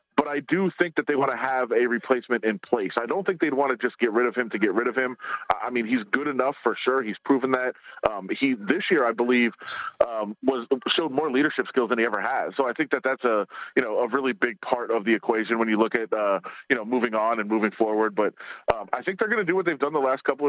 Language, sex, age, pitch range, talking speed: English, male, 30-49, 120-150 Hz, 280 wpm